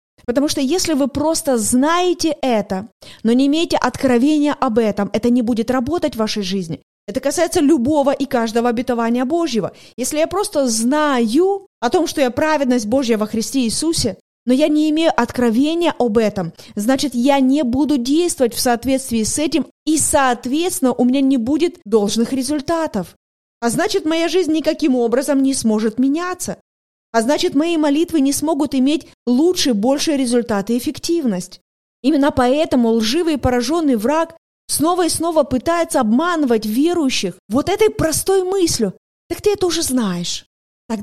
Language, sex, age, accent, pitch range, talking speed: Russian, female, 20-39, native, 240-315 Hz, 155 wpm